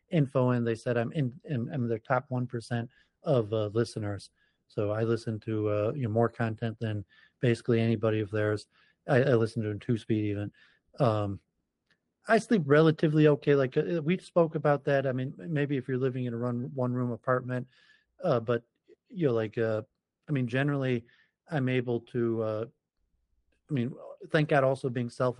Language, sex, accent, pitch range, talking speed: English, male, American, 115-135 Hz, 185 wpm